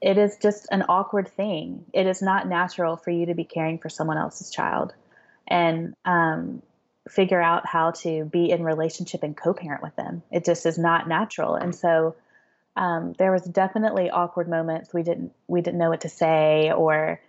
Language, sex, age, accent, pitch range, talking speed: English, female, 20-39, American, 160-180 Hz, 185 wpm